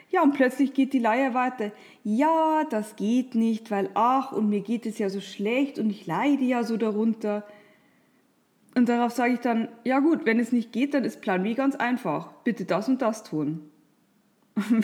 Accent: German